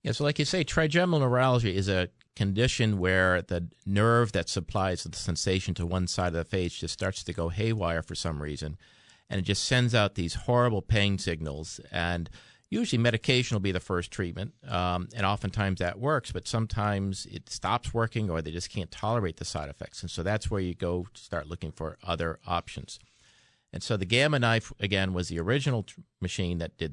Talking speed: 200 wpm